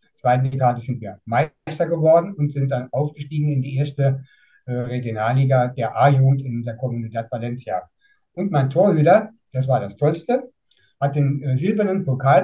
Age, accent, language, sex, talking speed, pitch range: 60-79, German, German, male, 155 wpm, 125-155 Hz